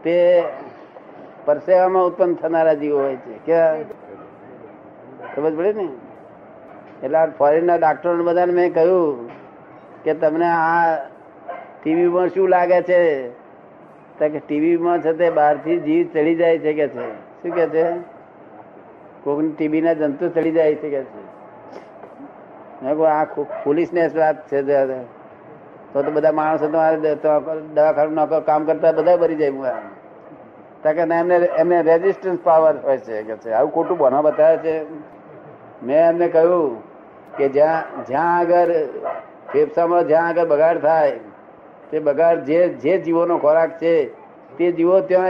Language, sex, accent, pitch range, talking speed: Gujarati, male, native, 155-180 Hz, 125 wpm